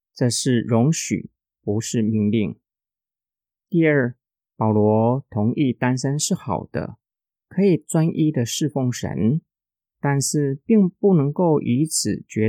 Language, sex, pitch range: Chinese, male, 115-165 Hz